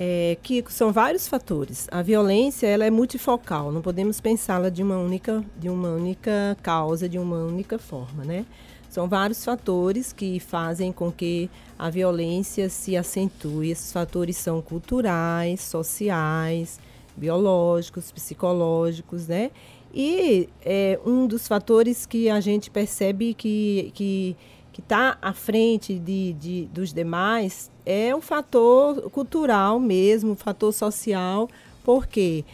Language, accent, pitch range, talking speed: Portuguese, Brazilian, 180-235 Hz, 135 wpm